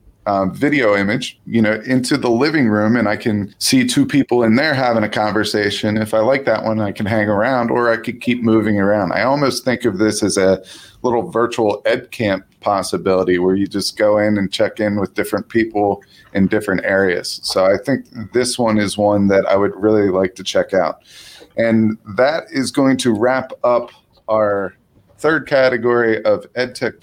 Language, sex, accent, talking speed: English, male, American, 195 wpm